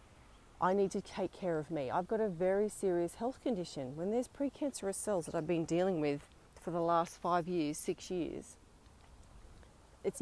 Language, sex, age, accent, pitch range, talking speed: English, female, 40-59, Australian, 150-180 Hz, 180 wpm